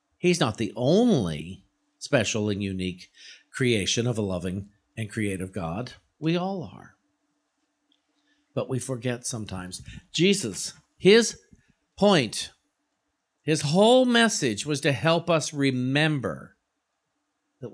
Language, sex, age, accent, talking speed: English, male, 50-69, American, 110 wpm